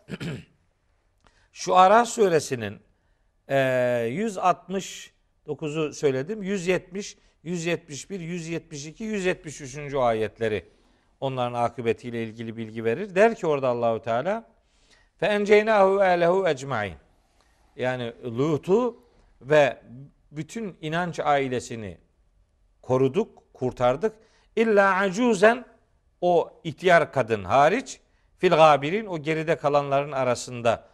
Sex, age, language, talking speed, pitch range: male, 50-69, Turkish, 85 wpm, 120-185 Hz